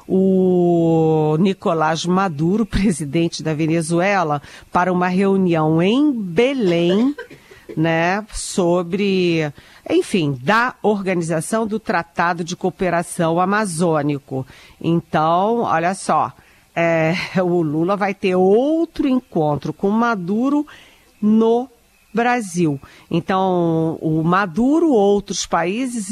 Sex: female